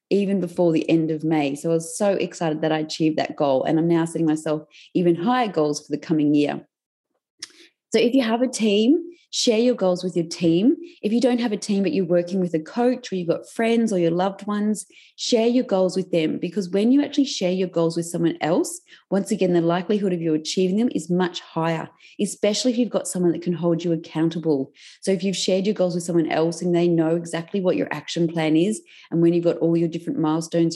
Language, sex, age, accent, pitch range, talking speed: English, female, 30-49, Australian, 165-205 Hz, 240 wpm